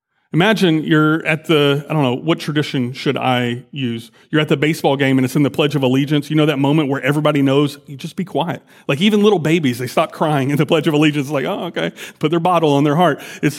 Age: 40-59